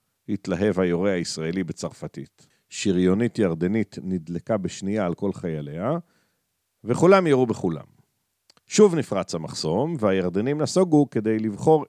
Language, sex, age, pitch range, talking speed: Hebrew, male, 50-69, 95-135 Hz, 105 wpm